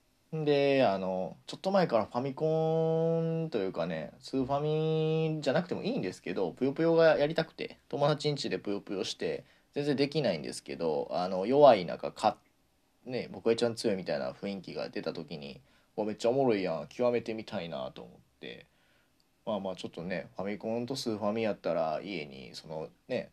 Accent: native